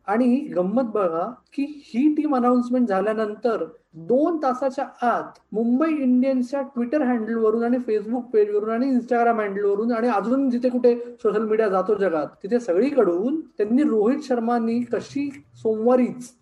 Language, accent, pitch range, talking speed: Marathi, native, 200-250 Hz, 130 wpm